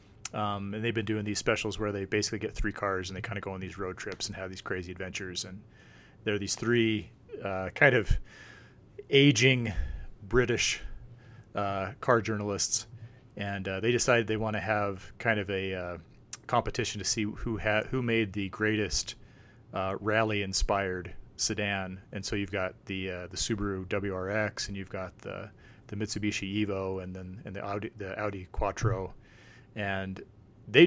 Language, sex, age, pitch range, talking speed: English, male, 30-49, 95-115 Hz, 175 wpm